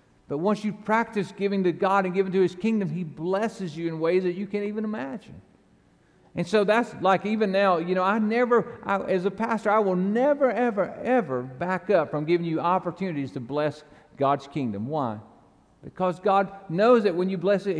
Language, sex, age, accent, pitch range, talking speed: English, male, 50-69, American, 165-215 Hz, 200 wpm